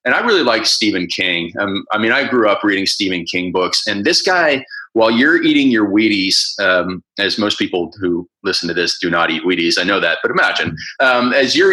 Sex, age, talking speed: male, 30-49, 225 wpm